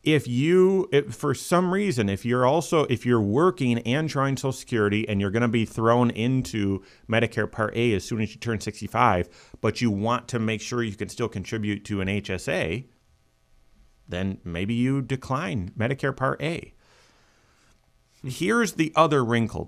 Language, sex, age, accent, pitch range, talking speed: English, male, 40-59, American, 105-135 Hz, 165 wpm